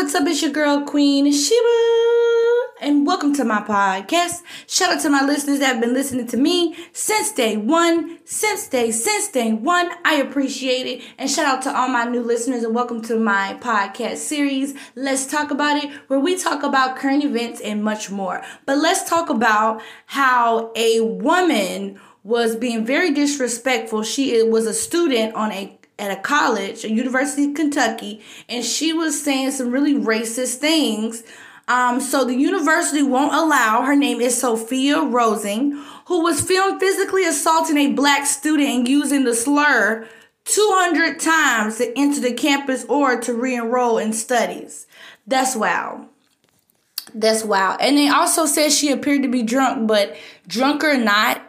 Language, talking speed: English, 170 wpm